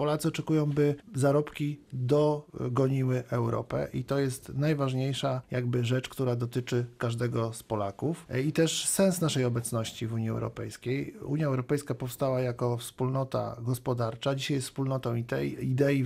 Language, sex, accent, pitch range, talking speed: Polish, male, native, 125-150 Hz, 140 wpm